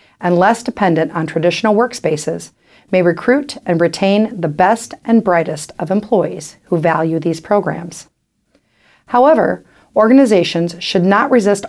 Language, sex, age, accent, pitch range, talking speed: English, female, 40-59, American, 170-225 Hz, 130 wpm